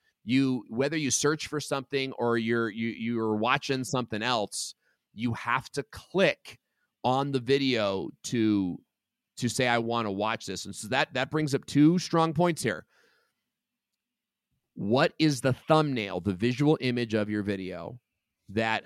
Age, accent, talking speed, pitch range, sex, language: 30-49, American, 155 wpm, 110-140 Hz, male, English